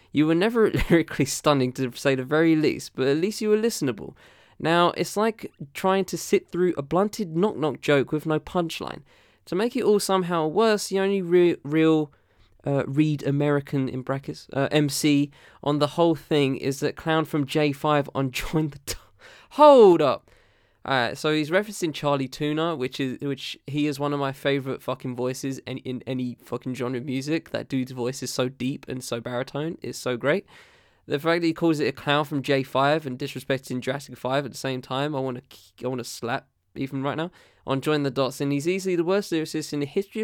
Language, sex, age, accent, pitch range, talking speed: English, male, 20-39, British, 140-175 Hz, 210 wpm